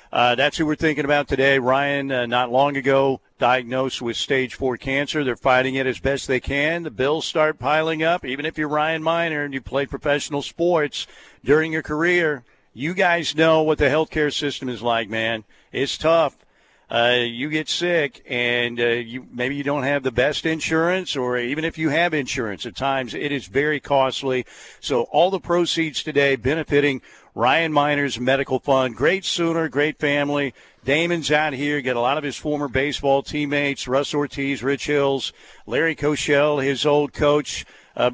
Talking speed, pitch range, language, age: 180 wpm, 135-155 Hz, English, 50-69